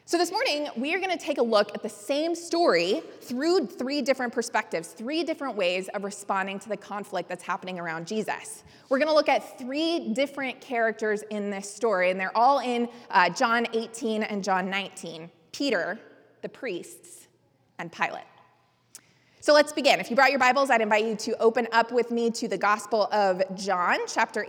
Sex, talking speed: female, 190 wpm